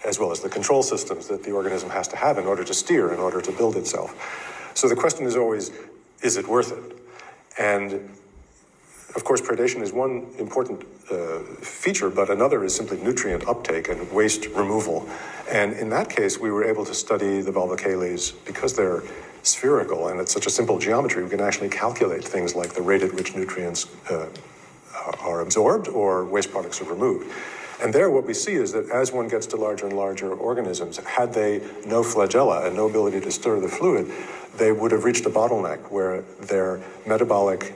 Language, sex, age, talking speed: English, male, 50-69, 195 wpm